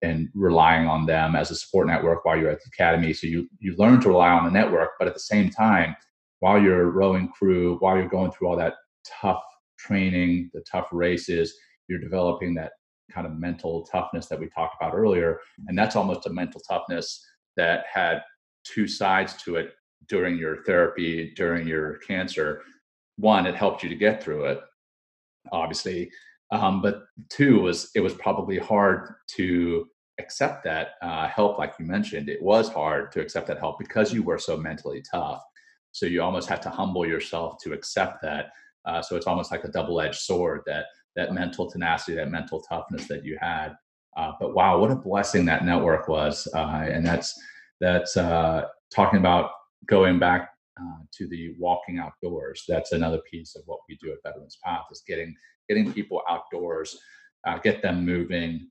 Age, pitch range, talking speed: 30-49, 85-105 Hz, 185 wpm